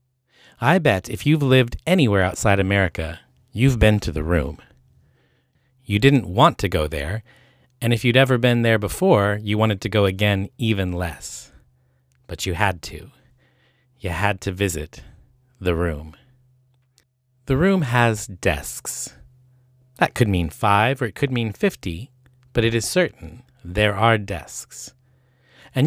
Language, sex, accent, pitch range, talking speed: English, male, American, 95-130 Hz, 150 wpm